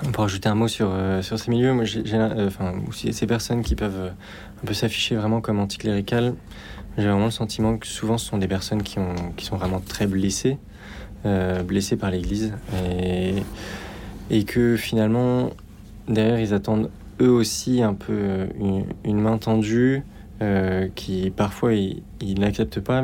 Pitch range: 100-110 Hz